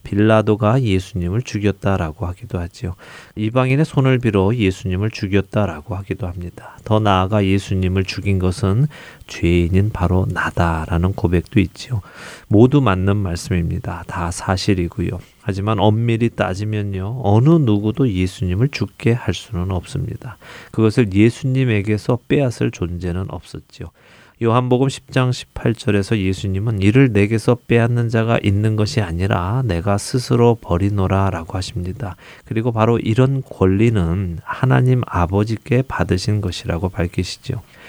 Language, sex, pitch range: Korean, male, 95-120 Hz